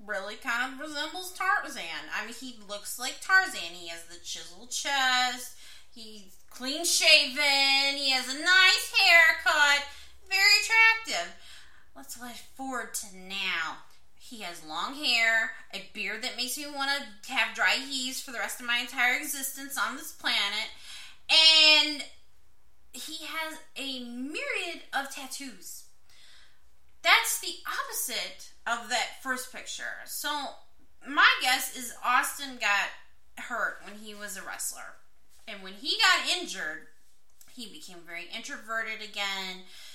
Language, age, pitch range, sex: English, 20-39, 225-300 Hz, female